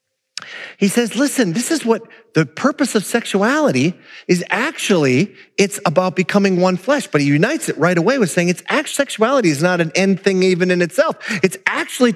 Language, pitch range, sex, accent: English, 170-240 Hz, male, American